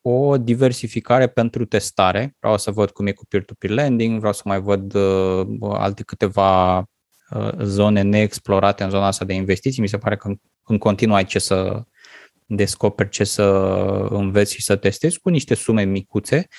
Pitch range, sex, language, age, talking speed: 100-120 Hz, male, Romanian, 20-39, 175 wpm